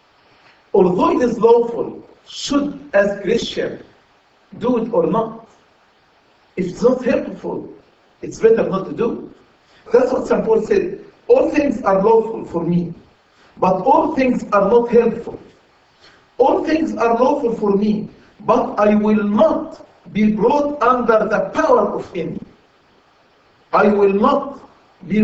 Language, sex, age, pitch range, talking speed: English, male, 60-79, 185-245 Hz, 140 wpm